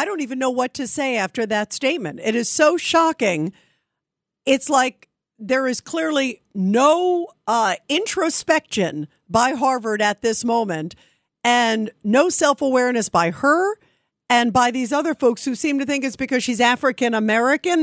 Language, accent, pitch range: English, American, 225-295 Hz